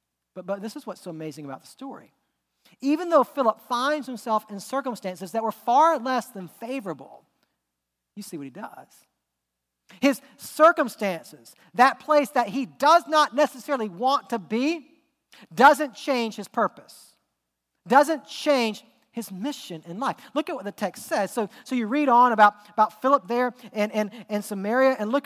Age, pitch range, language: 40-59, 210-285 Hz, English